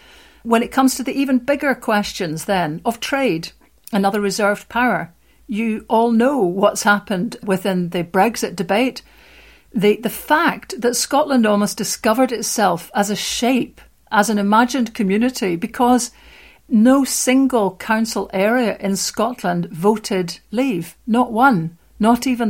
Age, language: 50-69, English